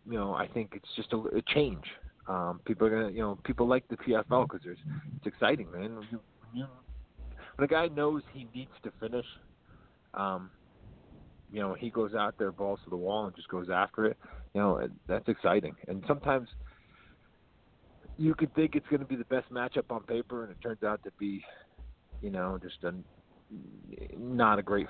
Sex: male